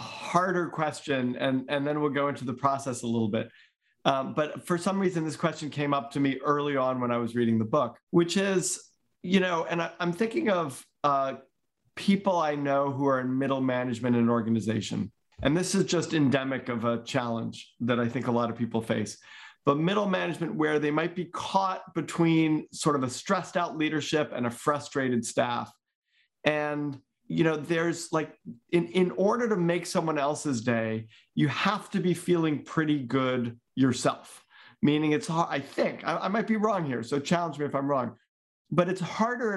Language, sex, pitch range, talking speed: English, male, 130-170 Hz, 195 wpm